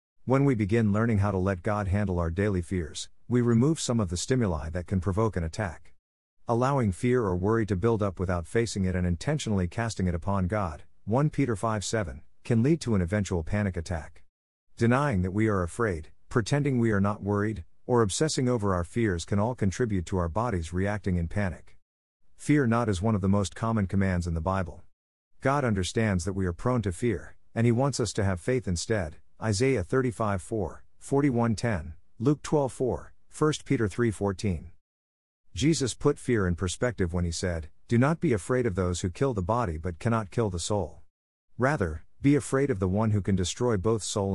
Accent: American